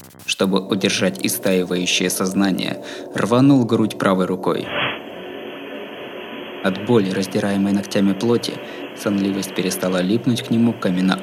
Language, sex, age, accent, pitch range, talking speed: Russian, male, 20-39, native, 95-120 Hz, 100 wpm